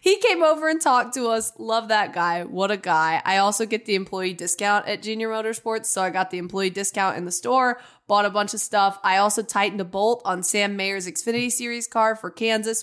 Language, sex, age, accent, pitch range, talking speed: English, female, 20-39, American, 185-230 Hz, 230 wpm